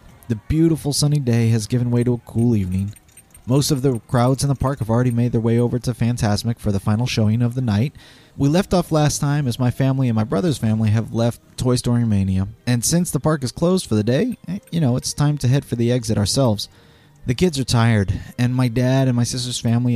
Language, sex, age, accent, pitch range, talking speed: English, male, 30-49, American, 105-135 Hz, 240 wpm